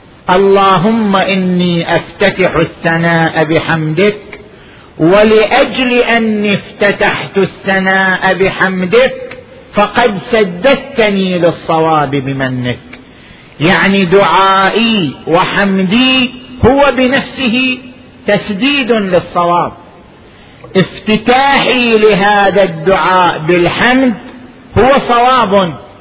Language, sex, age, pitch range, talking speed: Arabic, male, 50-69, 190-245 Hz, 60 wpm